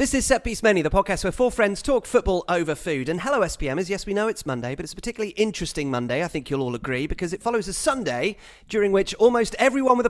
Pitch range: 150-215 Hz